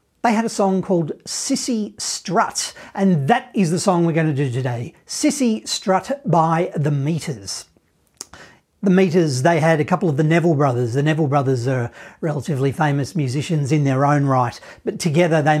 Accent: Australian